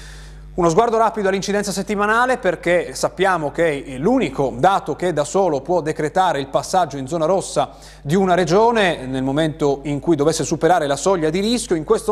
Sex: male